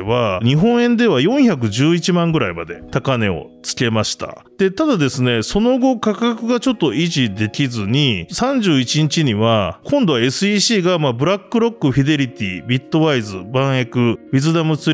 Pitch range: 110-185 Hz